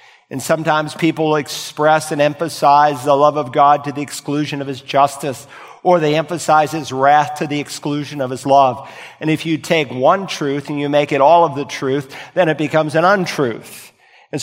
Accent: American